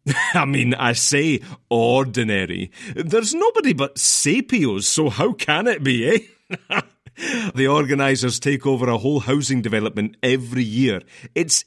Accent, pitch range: British, 115-145 Hz